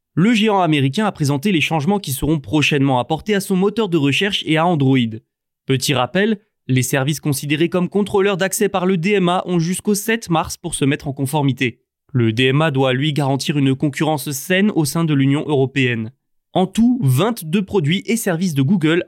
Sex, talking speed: male, 190 wpm